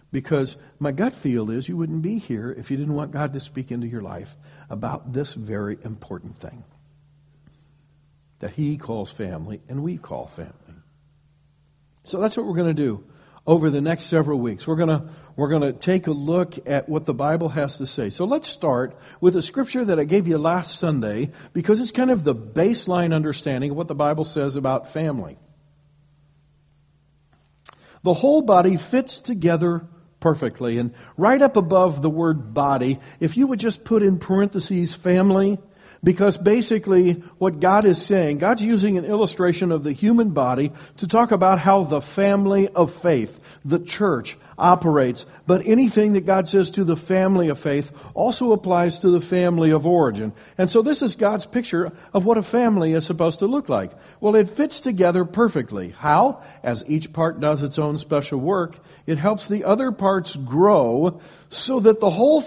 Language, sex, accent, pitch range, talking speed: English, male, American, 145-195 Hz, 180 wpm